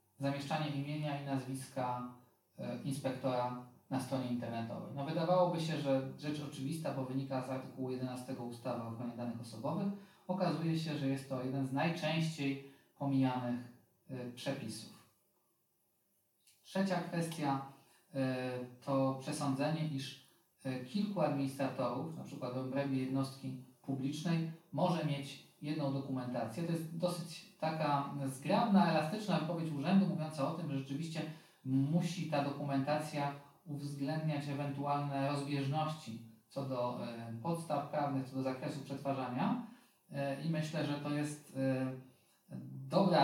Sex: male